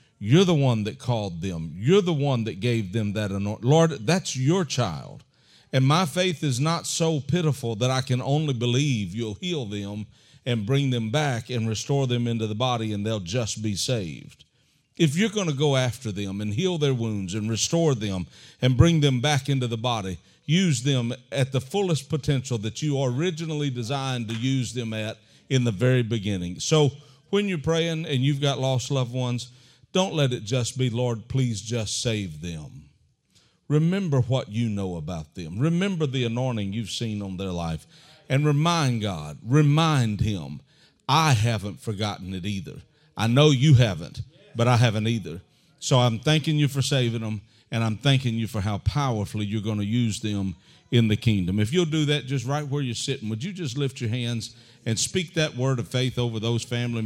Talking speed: 195 wpm